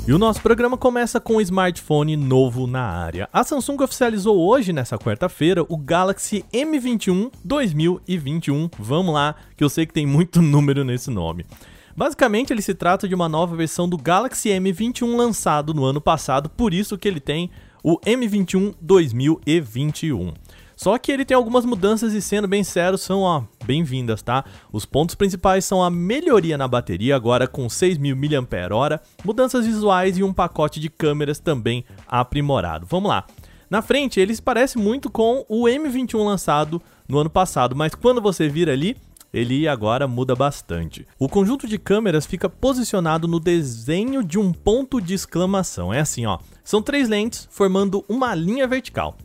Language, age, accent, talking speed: Portuguese, 20-39, Brazilian, 165 wpm